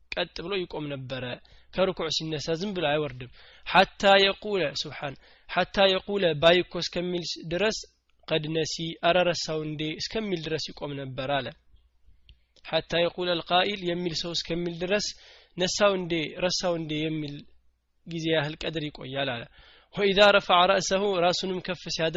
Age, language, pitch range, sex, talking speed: 20-39, Amharic, 145-180 Hz, male, 95 wpm